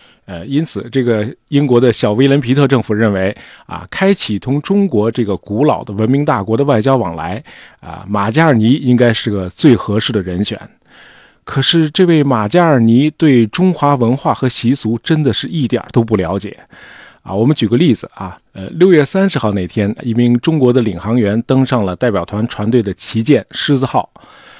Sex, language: male, Chinese